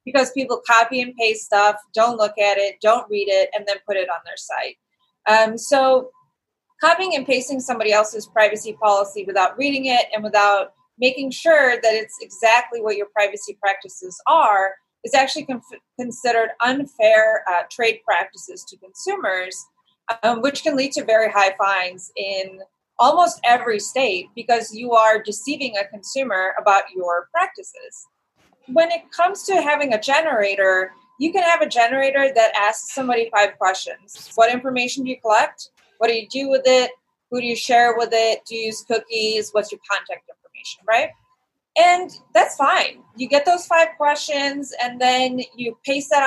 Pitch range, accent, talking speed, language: 215-275 Hz, American, 170 wpm, English